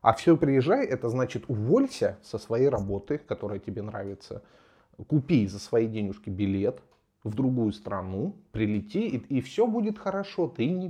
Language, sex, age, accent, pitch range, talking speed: Russian, male, 30-49, native, 105-160 Hz, 155 wpm